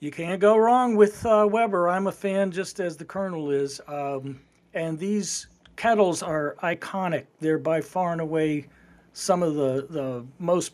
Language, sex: English, male